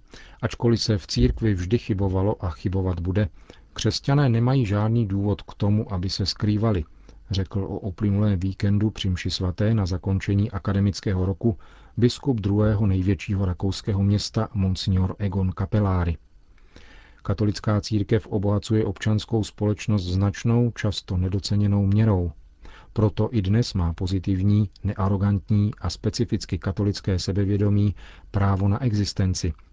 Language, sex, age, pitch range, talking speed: Czech, male, 40-59, 95-110 Hz, 115 wpm